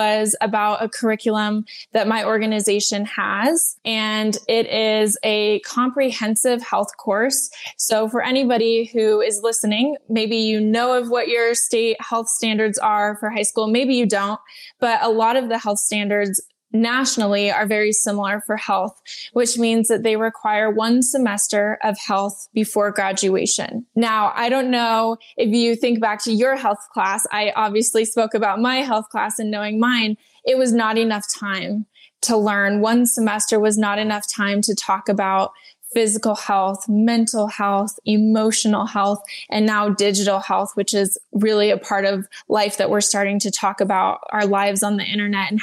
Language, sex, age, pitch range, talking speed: English, female, 10-29, 205-235 Hz, 170 wpm